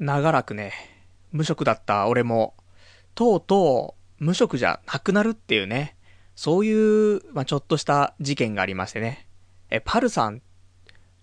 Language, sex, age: Japanese, male, 20-39